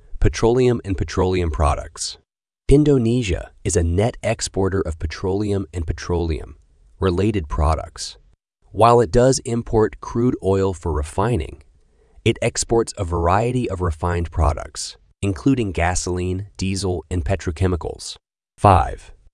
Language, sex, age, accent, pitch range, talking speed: English, male, 30-49, American, 85-105 Hz, 110 wpm